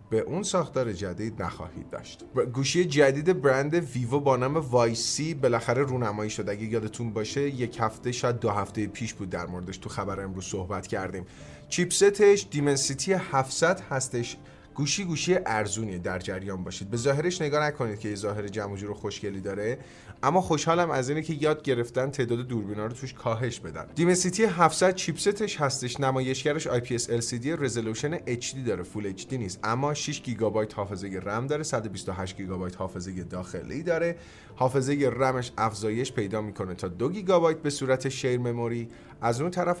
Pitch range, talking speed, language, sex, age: 110-155 Hz, 160 wpm, Persian, male, 30-49